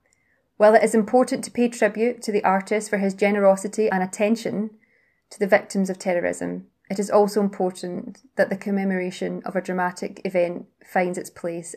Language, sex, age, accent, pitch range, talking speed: English, female, 20-39, British, 180-205 Hz, 175 wpm